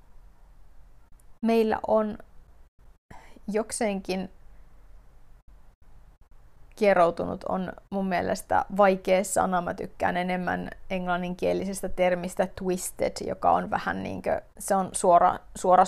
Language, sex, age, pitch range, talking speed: Finnish, female, 30-49, 180-215 Hz, 85 wpm